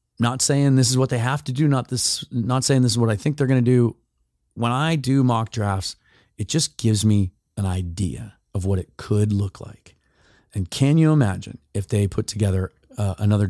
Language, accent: English, American